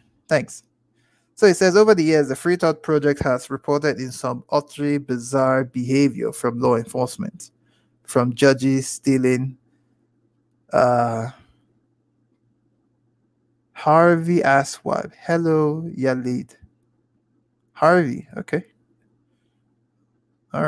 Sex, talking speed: male, 95 wpm